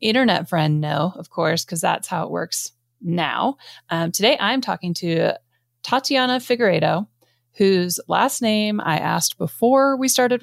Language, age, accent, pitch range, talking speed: English, 30-49, American, 160-200 Hz, 155 wpm